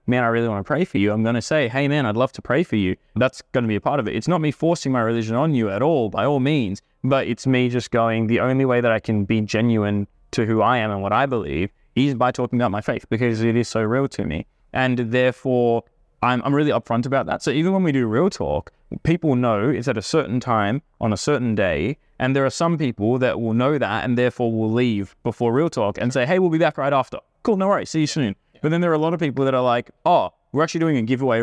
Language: English